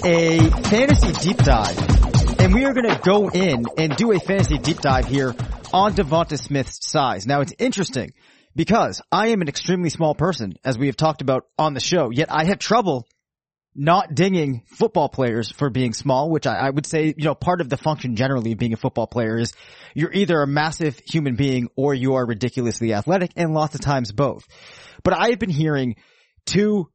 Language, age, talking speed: English, 30-49, 200 wpm